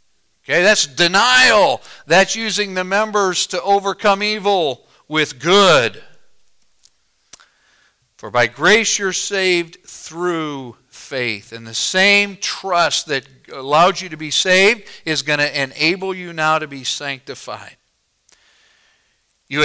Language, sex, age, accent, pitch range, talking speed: English, male, 50-69, American, 140-190 Hz, 120 wpm